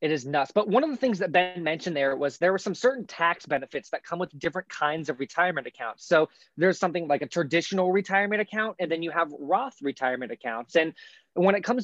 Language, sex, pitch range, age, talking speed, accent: English, male, 150-185 Hz, 20-39, 235 wpm, American